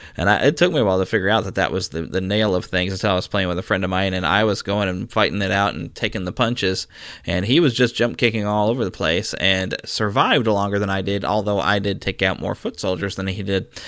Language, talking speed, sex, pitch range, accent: English, 280 wpm, male, 95-125 Hz, American